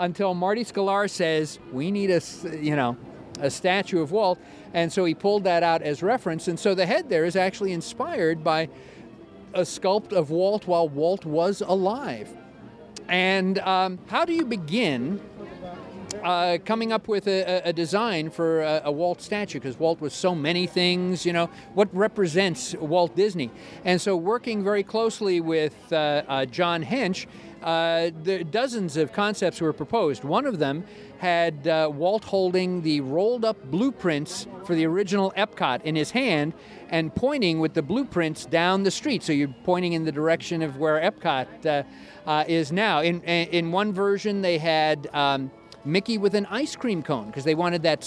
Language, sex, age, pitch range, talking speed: English, male, 50-69, 160-200 Hz, 175 wpm